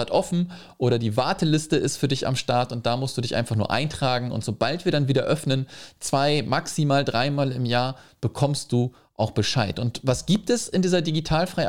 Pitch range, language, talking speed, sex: 125-155 Hz, German, 200 wpm, male